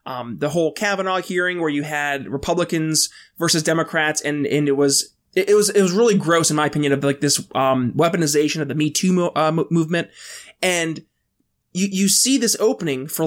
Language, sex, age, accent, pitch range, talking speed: English, male, 20-39, American, 155-200 Hz, 200 wpm